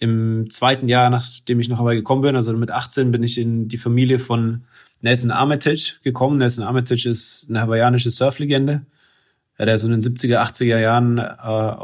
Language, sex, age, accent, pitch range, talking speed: German, male, 30-49, German, 115-130 Hz, 180 wpm